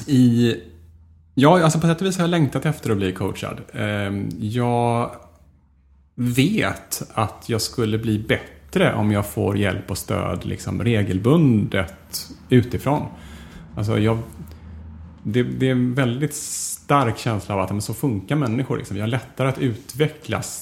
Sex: male